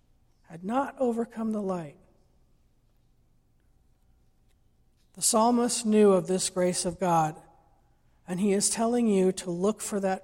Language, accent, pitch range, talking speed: English, American, 170-205 Hz, 130 wpm